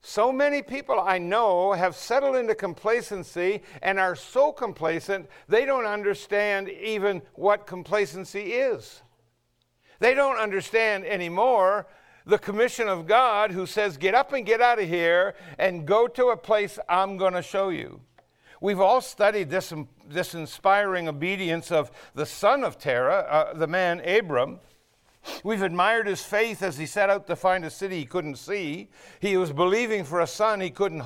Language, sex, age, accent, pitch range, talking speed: English, male, 60-79, American, 180-225 Hz, 165 wpm